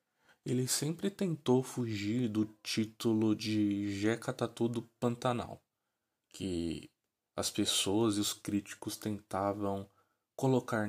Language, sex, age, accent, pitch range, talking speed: Portuguese, male, 20-39, Brazilian, 105-125 Hz, 105 wpm